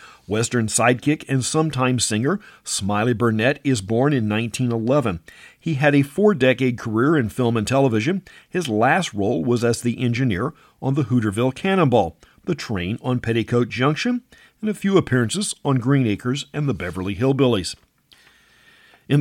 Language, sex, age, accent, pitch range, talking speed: English, male, 50-69, American, 115-145 Hz, 150 wpm